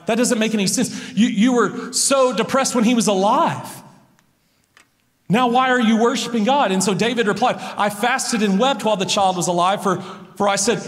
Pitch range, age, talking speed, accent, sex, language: 190-255 Hz, 40-59, 205 wpm, American, male, English